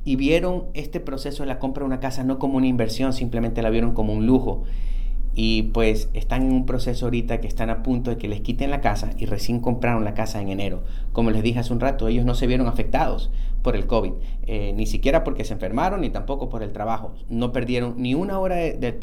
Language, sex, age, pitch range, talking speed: Spanish, male, 30-49, 110-130 Hz, 240 wpm